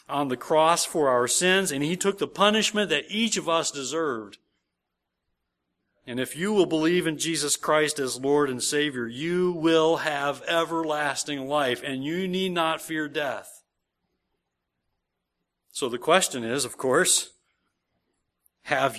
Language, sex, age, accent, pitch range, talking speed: English, male, 40-59, American, 125-170 Hz, 145 wpm